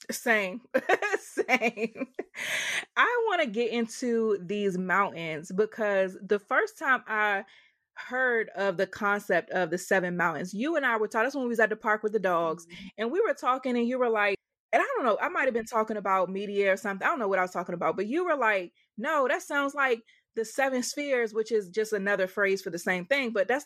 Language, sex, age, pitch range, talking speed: English, female, 20-39, 195-265 Hz, 220 wpm